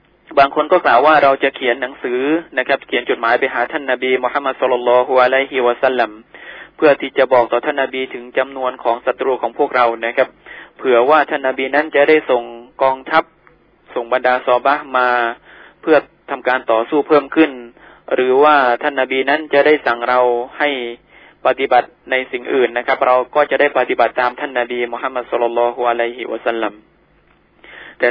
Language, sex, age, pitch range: Thai, male, 20-39, 120-145 Hz